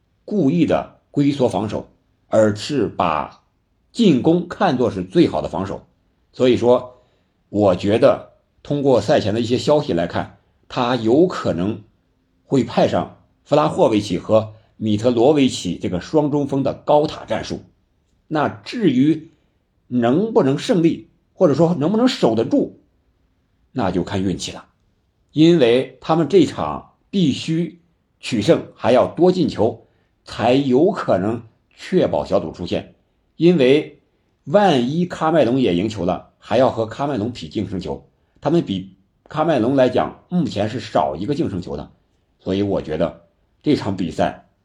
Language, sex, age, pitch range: Chinese, male, 50-69, 95-145 Hz